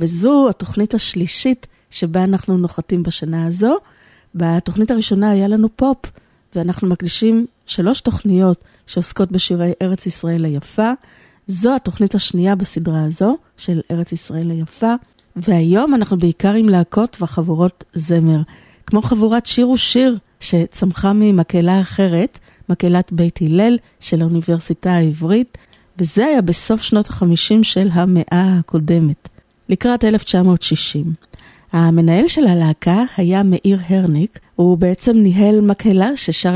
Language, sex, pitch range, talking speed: Hebrew, female, 170-210 Hz, 120 wpm